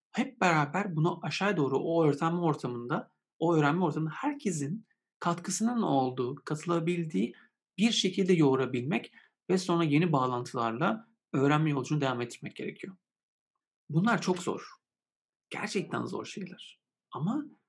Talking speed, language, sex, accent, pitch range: 120 wpm, Turkish, male, native, 130-175 Hz